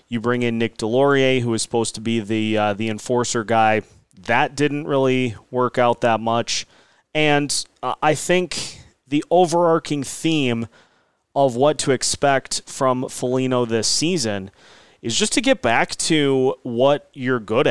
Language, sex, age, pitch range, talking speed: English, male, 30-49, 115-145 Hz, 155 wpm